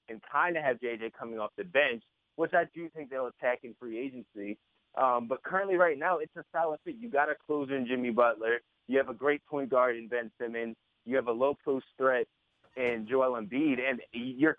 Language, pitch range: English, 120-150 Hz